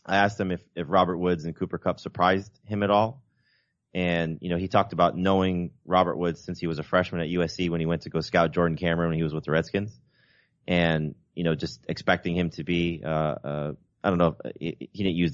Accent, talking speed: American, 245 wpm